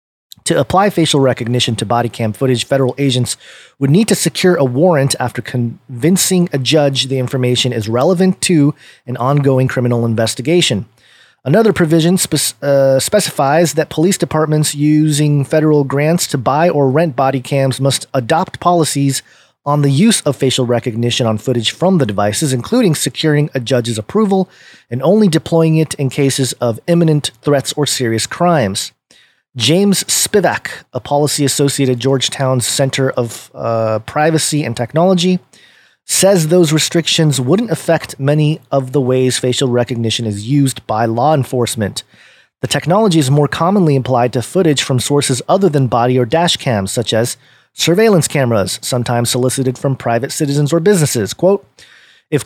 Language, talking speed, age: English, 155 wpm, 30-49